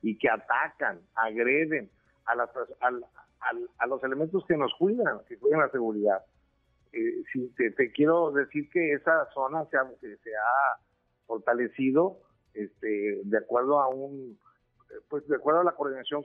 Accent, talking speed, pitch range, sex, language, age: Mexican, 160 wpm, 120-150 Hz, male, Spanish, 50-69